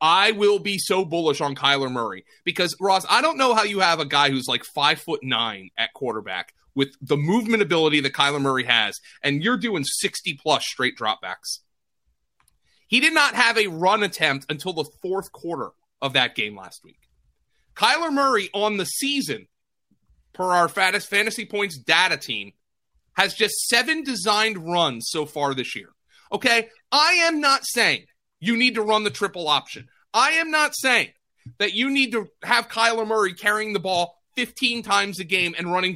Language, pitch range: English, 165-240 Hz